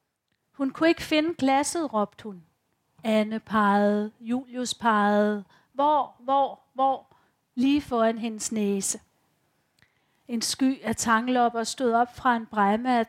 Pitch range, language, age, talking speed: 225-265 Hz, Danish, 40-59, 130 wpm